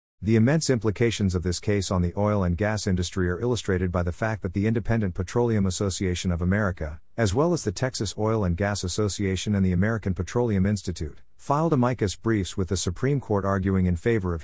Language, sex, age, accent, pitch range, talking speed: English, male, 50-69, American, 90-115 Hz, 205 wpm